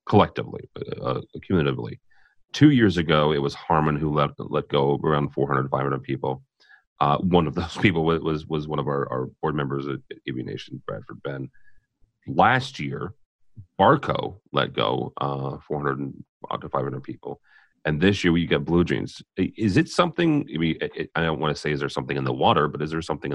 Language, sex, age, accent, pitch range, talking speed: English, male, 30-49, American, 70-85 Hz, 190 wpm